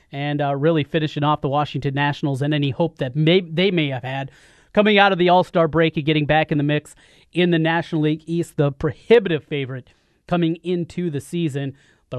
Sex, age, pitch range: male, 30-49, 150-190 Hz